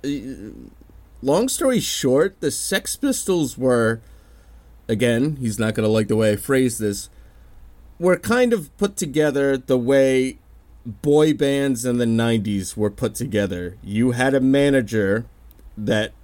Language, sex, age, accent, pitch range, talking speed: English, male, 30-49, American, 105-140 Hz, 140 wpm